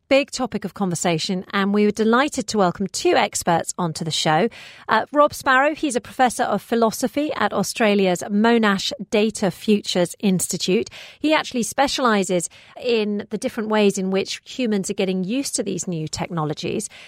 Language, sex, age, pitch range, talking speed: English, female, 40-59, 190-270 Hz, 160 wpm